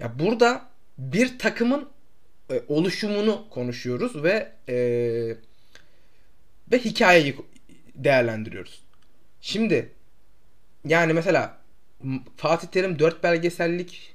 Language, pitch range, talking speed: Turkish, 135-185 Hz, 70 wpm